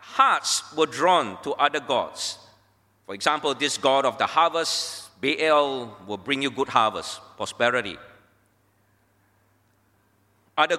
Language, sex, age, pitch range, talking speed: English, male, 50-69, 100-160 Hz, 115 wpm